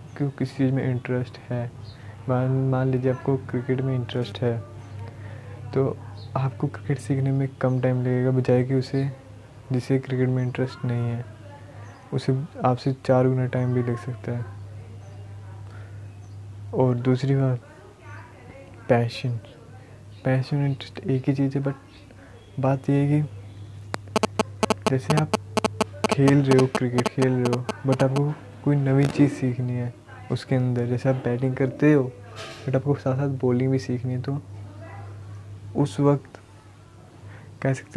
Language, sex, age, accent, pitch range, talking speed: Hindi, male, 20-39, native, 110-135 Hz, 140 wpm